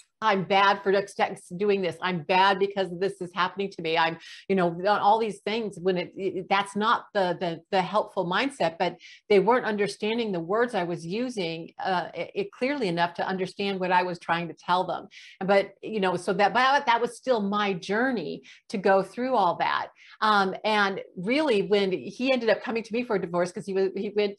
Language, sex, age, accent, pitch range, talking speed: English, female, 50-69, American, 180-215 Hz, 210 wpm